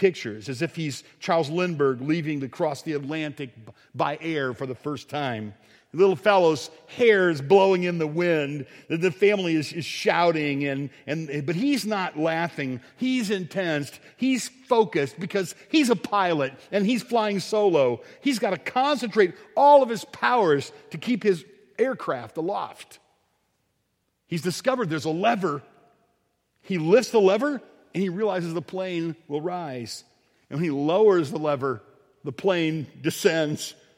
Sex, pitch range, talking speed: male, 155-210 Hz, 150 wpm